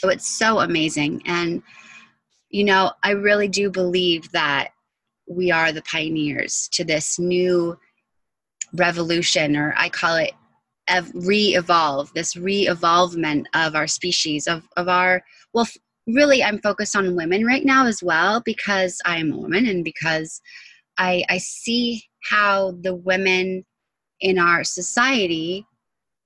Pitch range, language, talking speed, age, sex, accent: 170-200 Hz, English, 135 wpm, 20-39, female, American